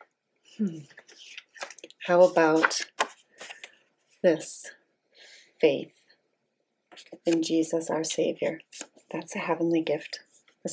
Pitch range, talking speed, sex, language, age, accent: 165-220 Hz, 80 wpm, female, English, 30-49, American